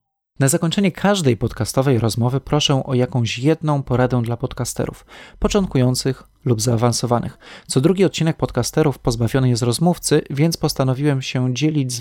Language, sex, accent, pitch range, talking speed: Polish, male, native, 125-145 Hz, 135 wpm